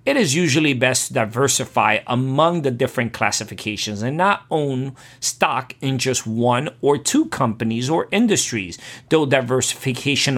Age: 40-59